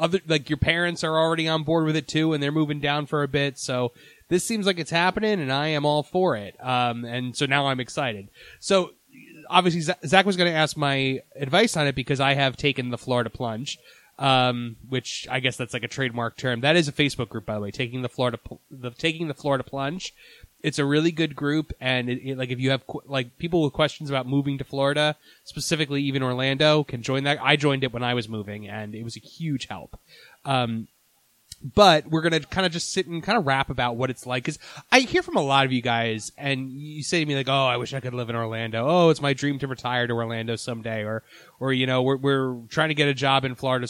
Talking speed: 245 wpm